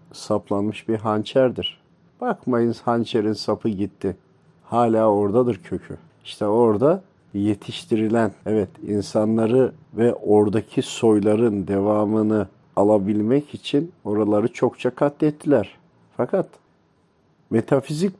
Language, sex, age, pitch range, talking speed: Turkish, male, 50-69, 105-125 Hz, 85 wpm